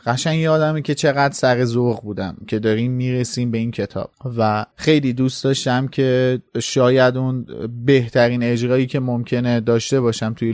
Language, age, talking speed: Persian, 30-49, 150 wpm